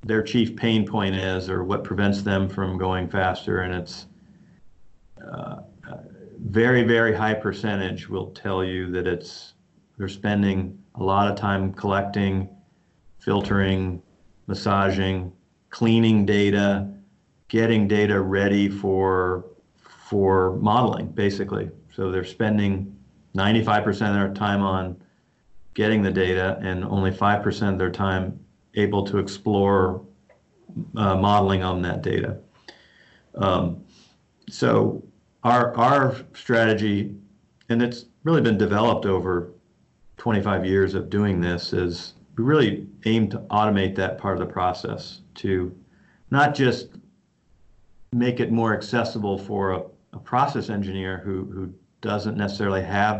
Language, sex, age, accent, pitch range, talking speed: English, male, 40-59, American, 95-105 Hz, 125 wpm